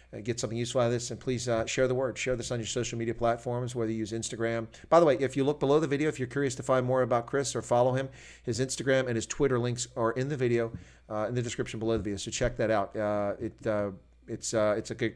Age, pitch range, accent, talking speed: 40-59, 110-130 Hz, American, 285 wpm